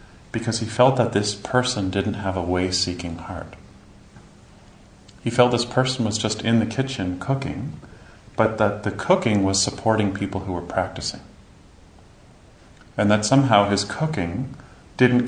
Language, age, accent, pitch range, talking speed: English, 40-59, American, 90-115 Hz, 145 wpm